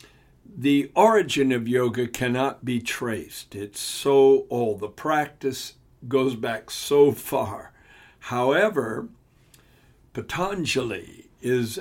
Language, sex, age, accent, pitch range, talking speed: English, male, 60-79, American, 120-140 Hz, 95 wpm